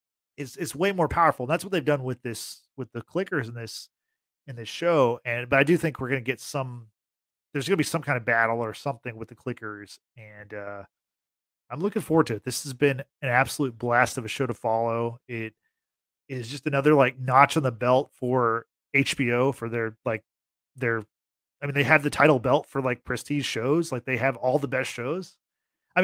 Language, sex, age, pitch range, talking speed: English, male, 30-49, 125-155 Hz, 220 wpm